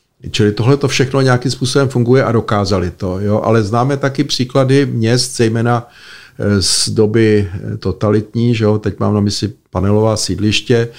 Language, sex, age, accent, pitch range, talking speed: Czech, male, 50-69, native, 100-115 Hz, 155 wpm